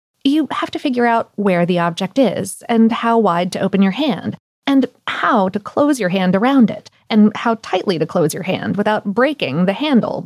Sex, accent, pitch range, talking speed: female, American, 200-270 Hz, 205 wpm